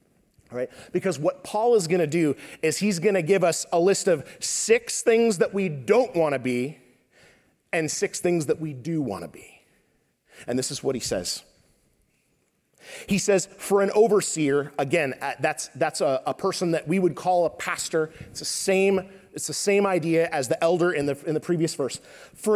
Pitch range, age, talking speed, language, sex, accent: 155-200 Hz, 30-49, 195 wpm, English, male, American